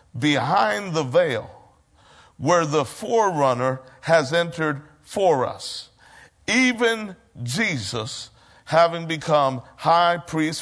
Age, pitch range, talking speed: 50-69, 125-150 Hz, 90 wpm